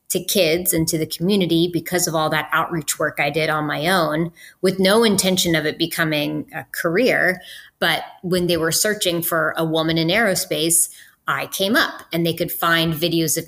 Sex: female